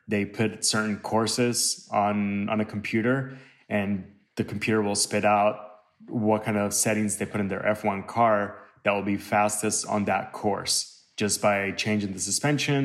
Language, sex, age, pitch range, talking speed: English, male, 20-39, 100-115 Hz, 170 wpm